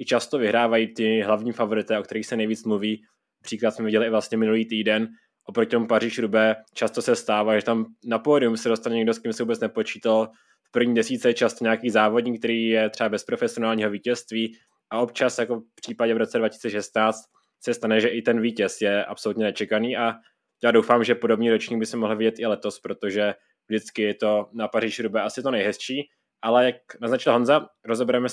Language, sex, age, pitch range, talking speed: Czech, male, 20-39, 110-120 Hz, 200 wpm